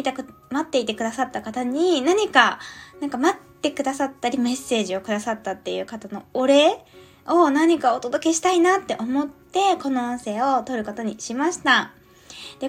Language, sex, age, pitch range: Japanese, female, 20-39, 215-325 Hz